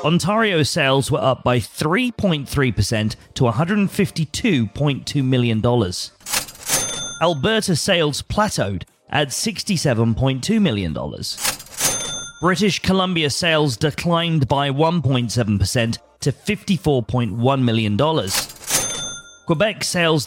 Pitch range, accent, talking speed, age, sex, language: 115-165 Hz, British, 75 wpm, 30-49, male, English